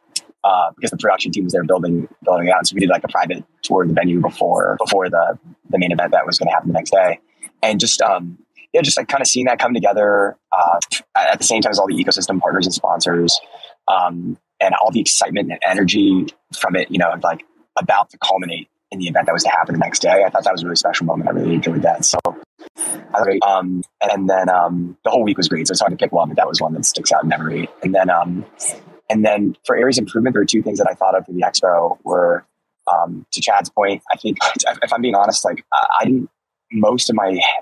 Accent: American